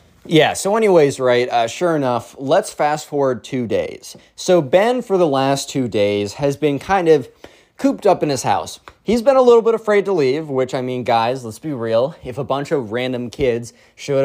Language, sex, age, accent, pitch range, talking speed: English, male, 20-39, American, 115-150 Hz, 210 wpm